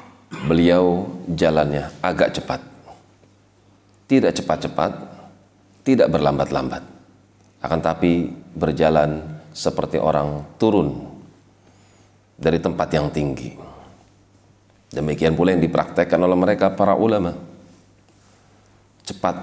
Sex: male